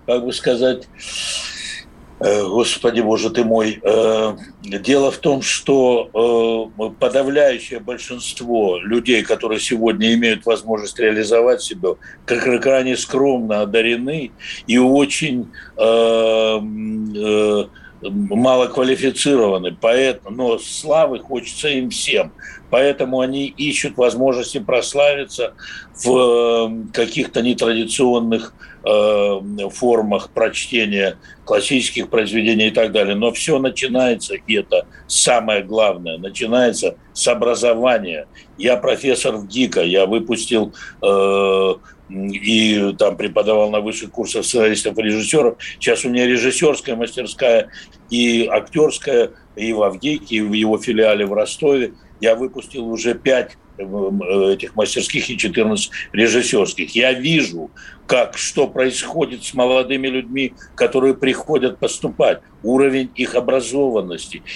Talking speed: 110 wpm